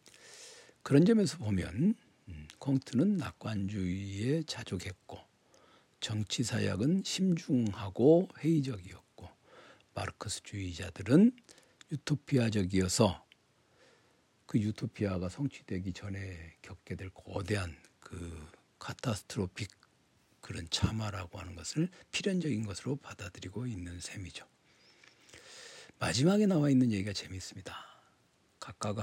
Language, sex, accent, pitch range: Korean, male, native, 95-130 Hz